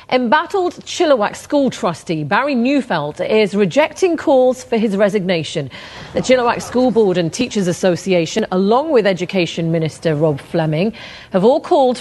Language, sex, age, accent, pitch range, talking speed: English, female, 40-59, British, 165-220 Hz, 140 wpm